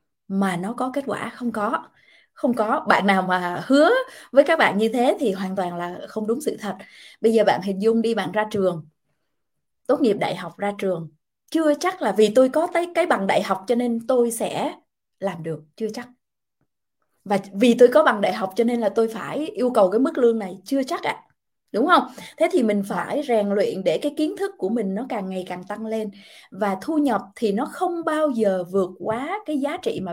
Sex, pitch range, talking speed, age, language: female, 195-270 Hz, 225 wpm, 20-39, Vietnamese